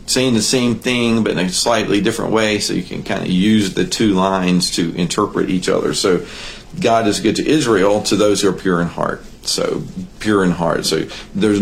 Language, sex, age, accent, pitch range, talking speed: English, male, 50-69, American, 90-115 Hz, 215 wpm